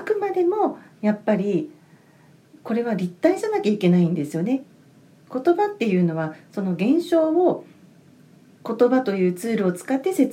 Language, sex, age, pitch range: Japanese, female, 40-59, 175-270 Hz